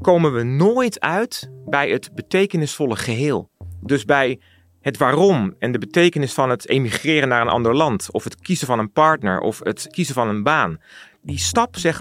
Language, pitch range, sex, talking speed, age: Dutch, 120-180 Hz, male, 185 wpm, 40-59